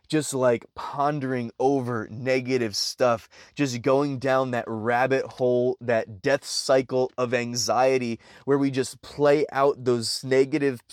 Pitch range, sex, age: 130-160 Hz, male, 20-39